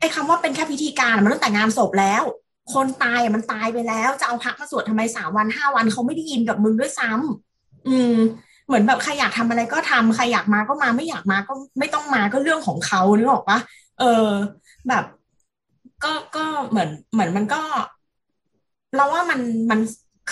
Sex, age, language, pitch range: female, 20-39, Thai, 180-240 Hz